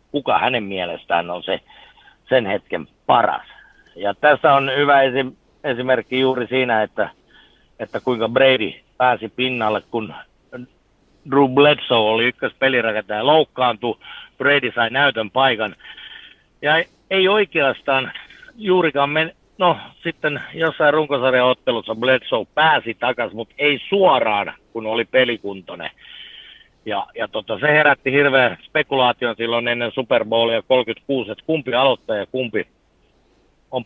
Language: Finnish